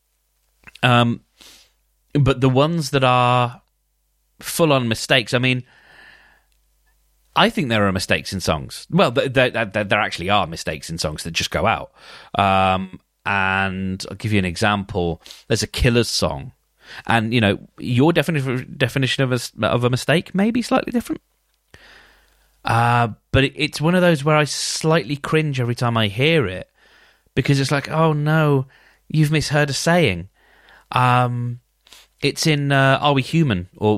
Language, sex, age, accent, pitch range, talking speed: English, male, 30-49, British, 100-140 Hz, 150 wpm